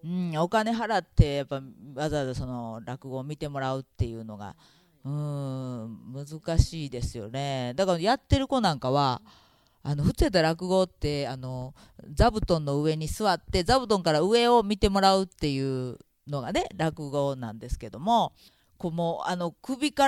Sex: female